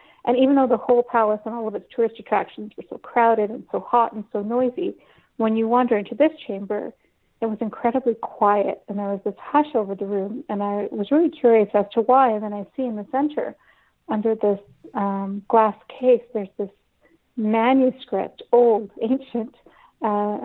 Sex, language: female, English